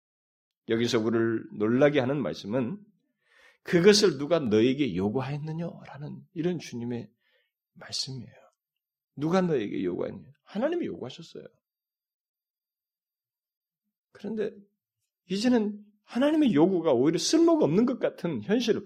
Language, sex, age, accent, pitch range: Korean, male, 30-49, native, 140-215 Hz